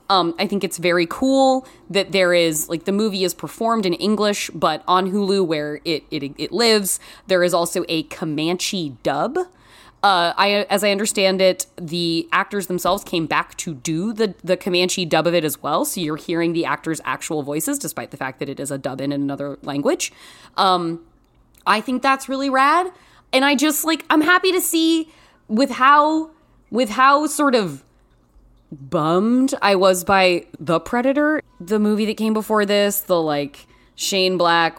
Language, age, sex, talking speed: English, 20-39, female, 180 wpm